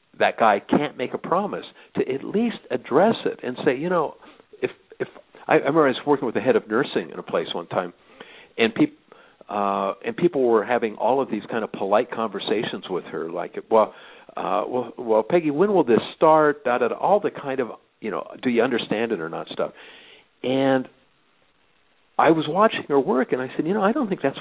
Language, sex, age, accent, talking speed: English, male, 60-79, American, 220 wpm